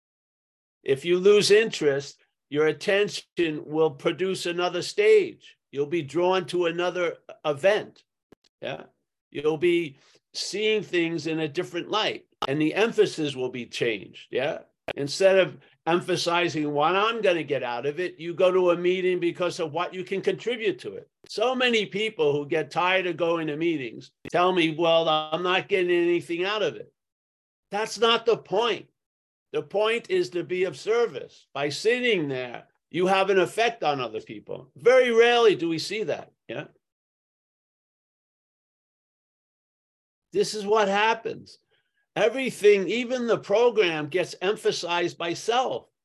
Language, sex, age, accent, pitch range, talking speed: English, male, 50-69, American, 170-235 Hz, 150 wpm